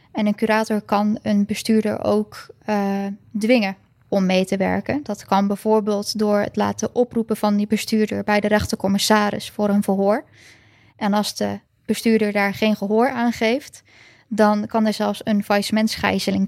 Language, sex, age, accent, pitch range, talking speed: Dutch, female, 10-29, Dutch, 205-225 Hz, 160 wpm